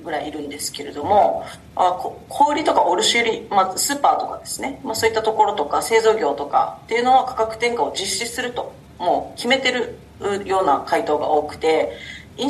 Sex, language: female, Japanese